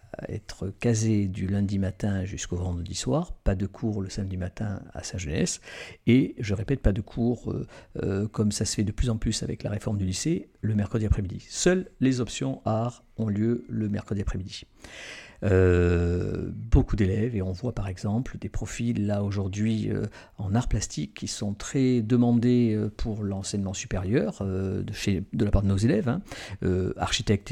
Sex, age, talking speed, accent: male, 50-69, 185 wpm, French